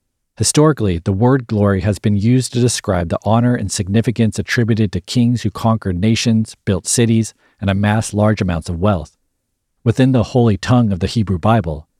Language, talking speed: English, 175 wpm